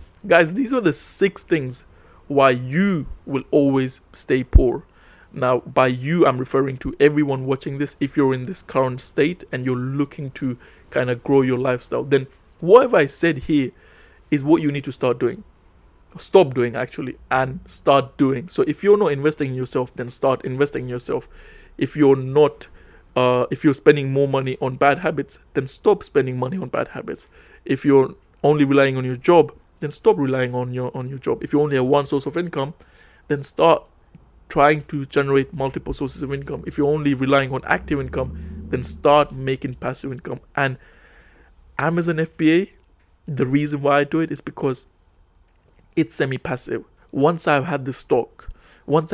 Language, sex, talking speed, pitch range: English, male, 180 wpm, 130-150 Hz